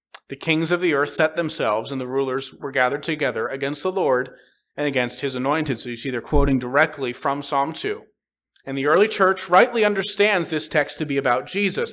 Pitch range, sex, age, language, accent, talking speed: 140-195 Hz, male, 30-49, English, American, 205 wpm